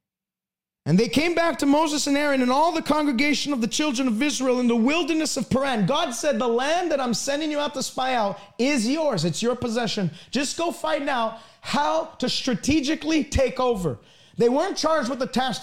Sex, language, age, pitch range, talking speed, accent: male, English, 30-49, 225-290 Hz, 205 wpm, American